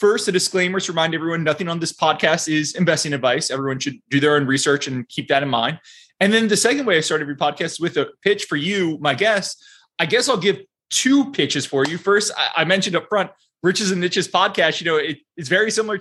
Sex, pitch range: male, 155-200 Hz